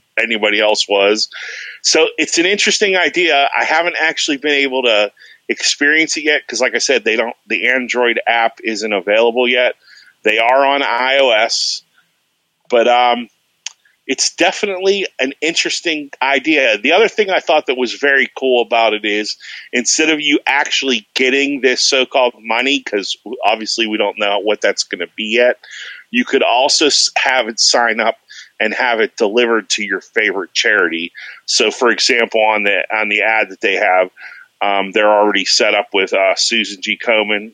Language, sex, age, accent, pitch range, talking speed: English, male, 40-59, American, 105-135 Hz, 170 wpm